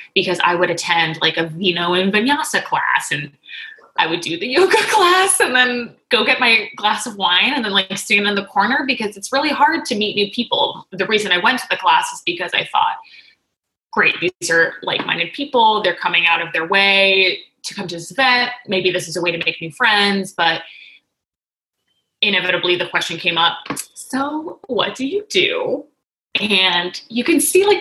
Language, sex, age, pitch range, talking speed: English, female, 20-39, 180-270 Hz, 200 wpm